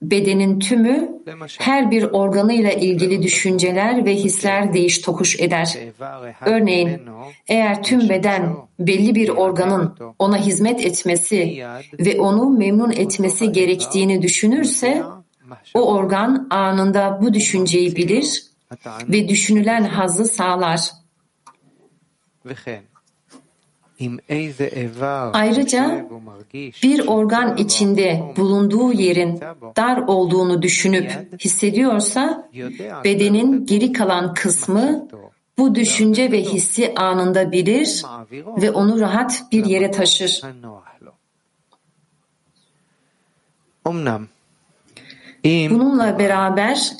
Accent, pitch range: native, 170-215 Hz